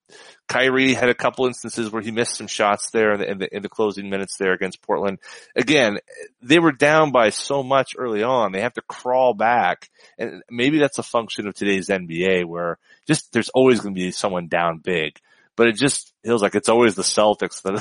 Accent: American